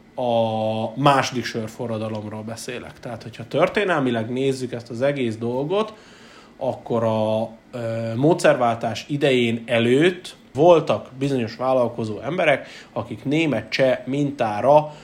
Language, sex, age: Hungarian, male, 30-49